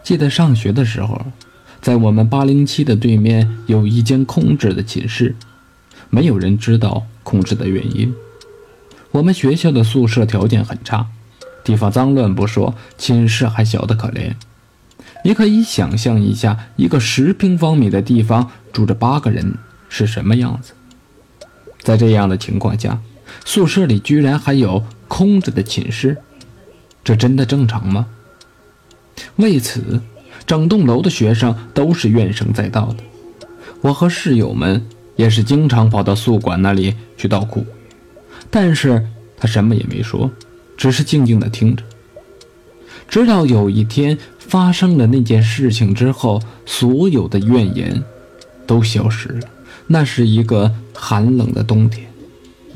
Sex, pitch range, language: male, 110-130 Hz, Chinese